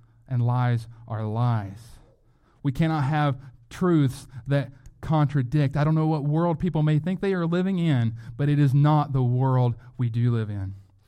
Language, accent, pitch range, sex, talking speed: English, American, 120-150 Hz, male, 175 wpm